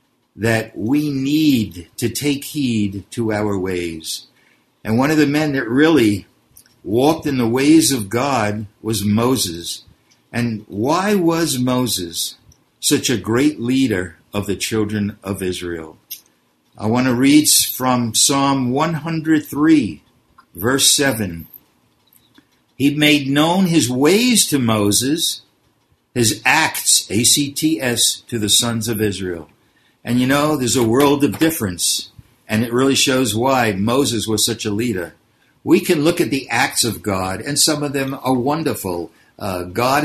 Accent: American